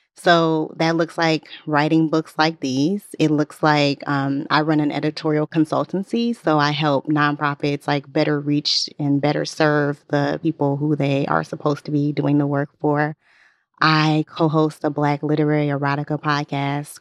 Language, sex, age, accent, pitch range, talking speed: English, female, 20-39, American, 145-160 Hz, 160 wpm